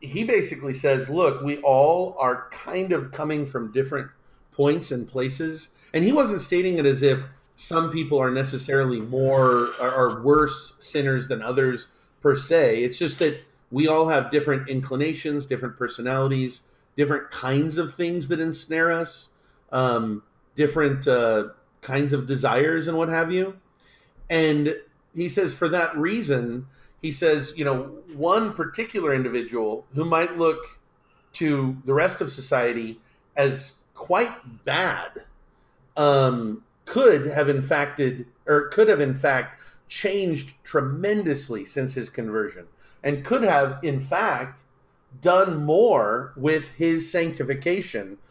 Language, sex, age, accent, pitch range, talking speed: English, male, 40-59, American, 130-160 Hz, 135 wpm